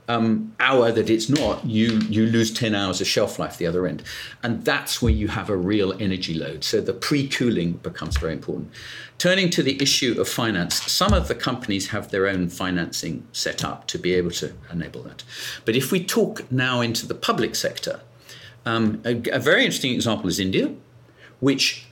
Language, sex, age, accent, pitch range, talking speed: English, male, 50-69, British, 105-130 Hz, 195 wpm